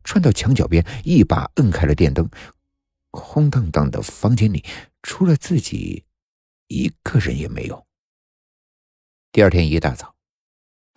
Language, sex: Chinese, male